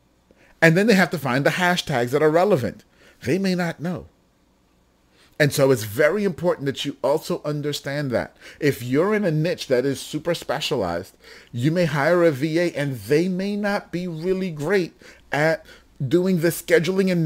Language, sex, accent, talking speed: English, male, American, 175 wpm